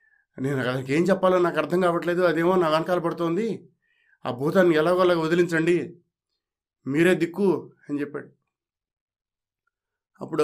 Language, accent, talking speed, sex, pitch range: Telugu, native, 120 wpm, male, 155-215 Hz